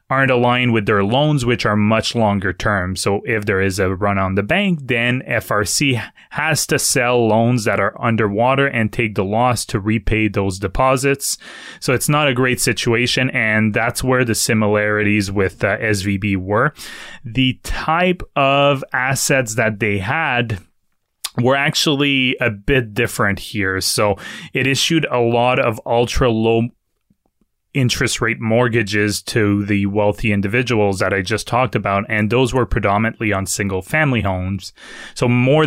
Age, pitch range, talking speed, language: 20-39, 105-125 Hz, 155 wpm, English